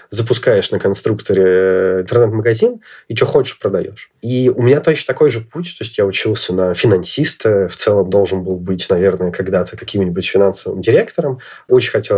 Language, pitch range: Russian, 100-155 Hz